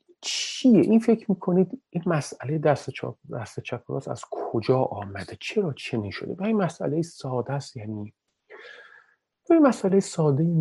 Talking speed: 145 wpm